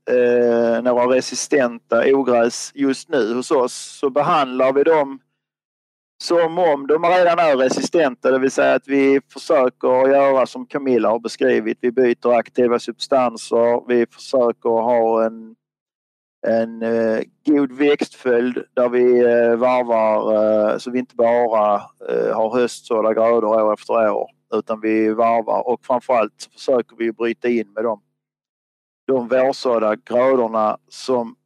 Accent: native